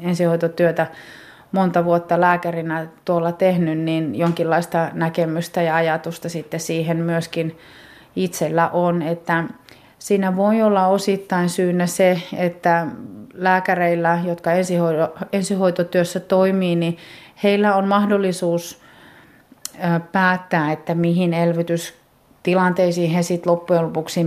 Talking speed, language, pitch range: 100 wpm, Finnish, 160-185 Hz